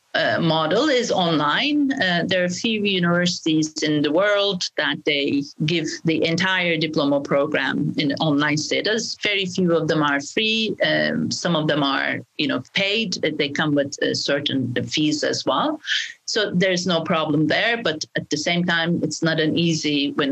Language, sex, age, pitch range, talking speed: Indonesian, female, 40-59, 150-185 Hz, 175 wpm